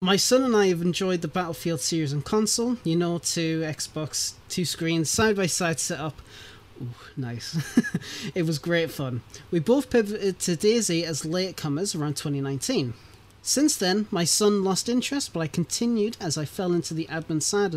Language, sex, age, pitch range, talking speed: English, male, 30-49, 145-200 Hz, 175 wpm